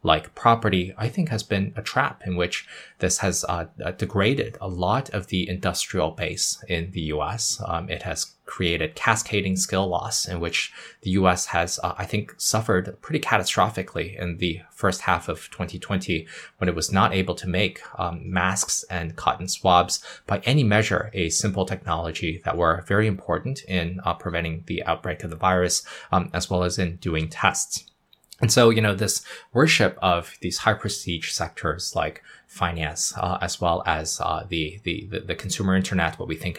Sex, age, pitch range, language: male, 20-39, 85-105 Hz, English